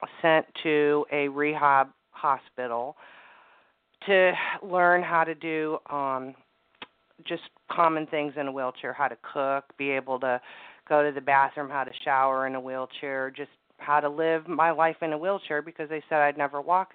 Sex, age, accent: female, 40-59, American